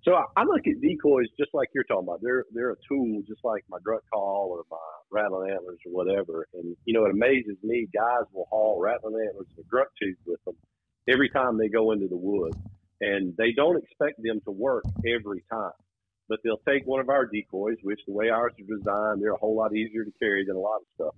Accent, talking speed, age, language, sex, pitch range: American, 235 wpm, 40-59, English, male, 95-125 Hz